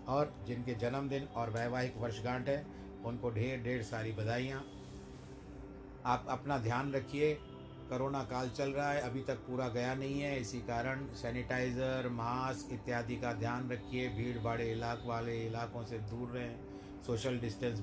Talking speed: 150 wpm